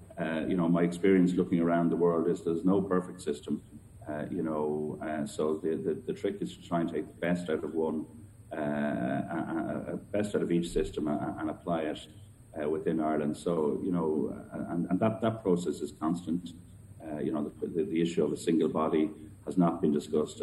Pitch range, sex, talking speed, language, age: 75-90 Hz, male, 215 wpm, English, 40-59